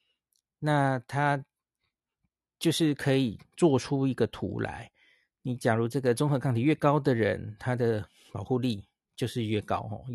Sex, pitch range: male, 115-150 Hz